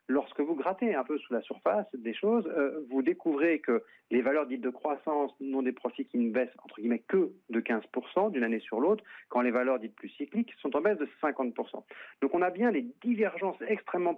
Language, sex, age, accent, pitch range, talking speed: French, male, 40-59, French, 115-180 Hz, 220 wpm